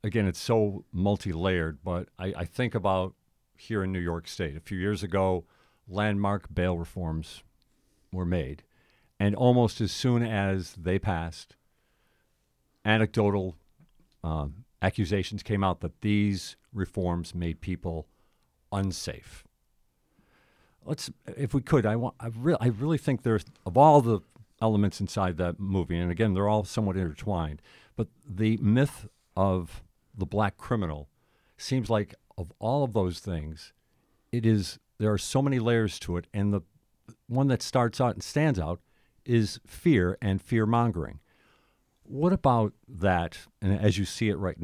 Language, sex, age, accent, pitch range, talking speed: English, male, 50-69, American, 90-115 Hz, 155 wpm